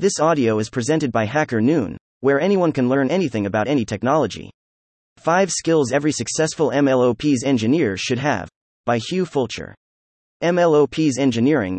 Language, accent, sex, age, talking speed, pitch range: English, American, male, 30-49, 145 wpm, 115-155 Hz